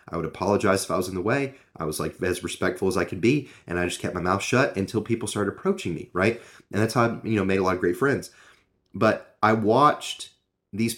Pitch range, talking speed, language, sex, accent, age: 95-115 Hz, 245 wpm, English, male, American, 30-49